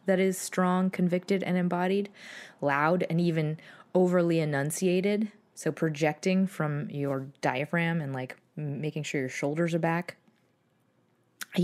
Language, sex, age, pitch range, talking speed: English, female, 20-39, 145-185 Hz, 130 wpm